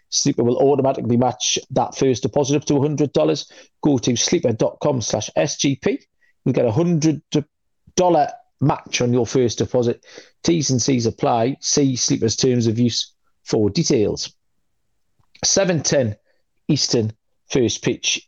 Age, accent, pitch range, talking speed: 40-59, British, 130-155 Hz, 130 wpm